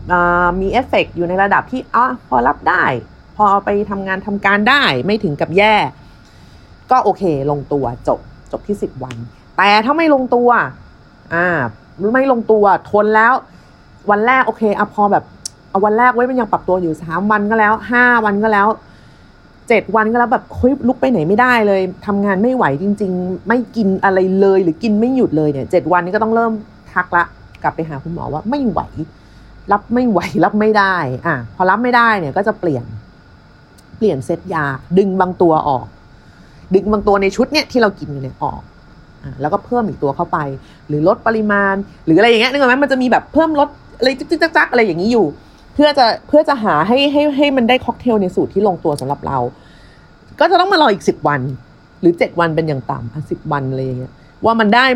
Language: Thai